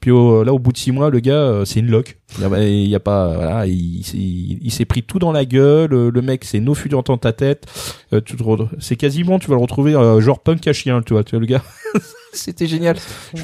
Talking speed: 260 wpm